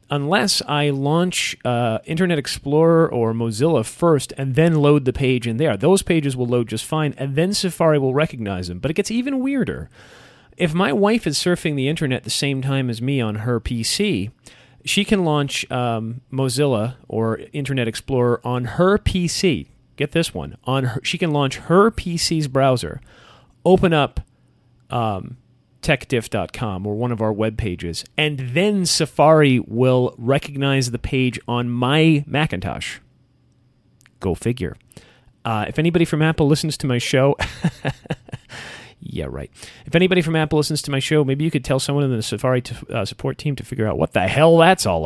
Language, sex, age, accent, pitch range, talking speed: English, male, 40-59, American, 120-155 Hz, 175 wpm